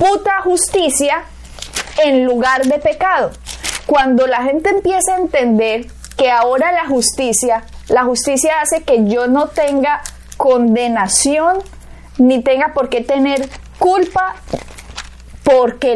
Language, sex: Spanish, female